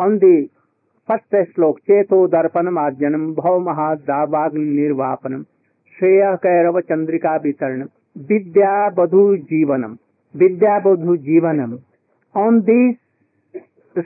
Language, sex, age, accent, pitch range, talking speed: English, male, 60-79, Indian, 155-225 Hz, 100 wpm